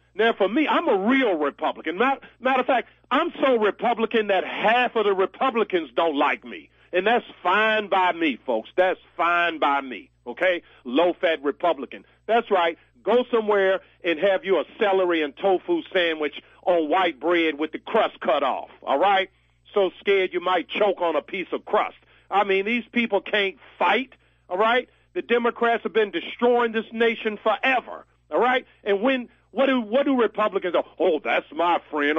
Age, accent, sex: 50-69, American, male